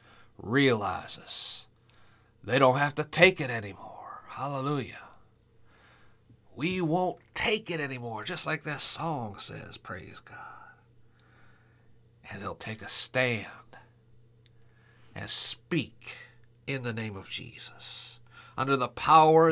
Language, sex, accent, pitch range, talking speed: English, male, American, 115-140 Hz, 110 wpm